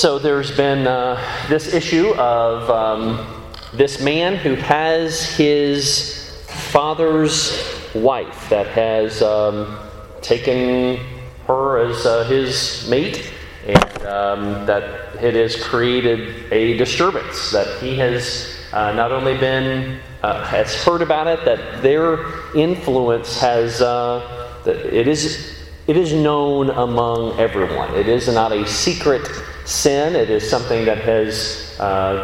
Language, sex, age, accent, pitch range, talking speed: English, male, 40-59, American, 115-160 Hz, 130 wpm